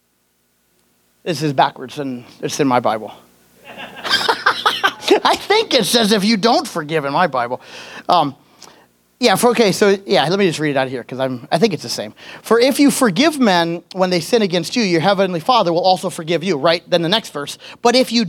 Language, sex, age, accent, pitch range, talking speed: English, male, 30-49, American, 170-260 Hz, 205 wpm